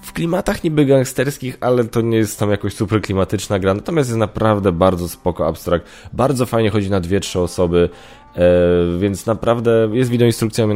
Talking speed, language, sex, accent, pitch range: 180 wpm, Polish, male, native, 90-120 Hz